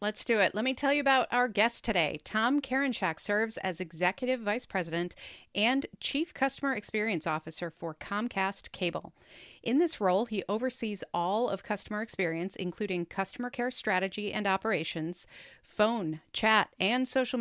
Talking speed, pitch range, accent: 155 wpm, 180-245 Hz, American